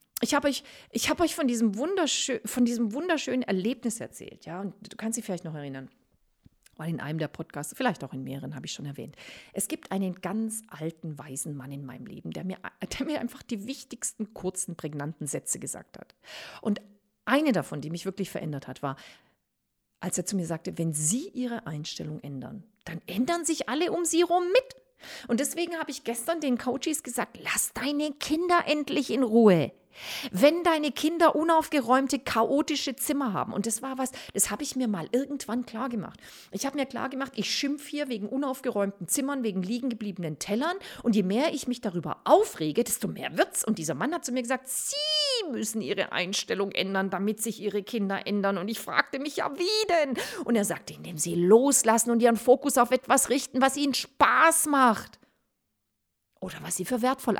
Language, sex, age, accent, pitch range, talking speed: German, female, 40-59, German, 190-280 Hz, 195 wpm